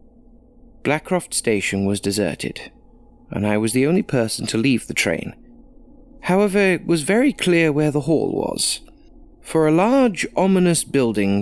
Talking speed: 145 wpm